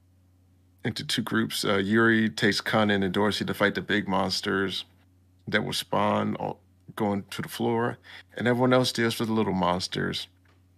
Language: English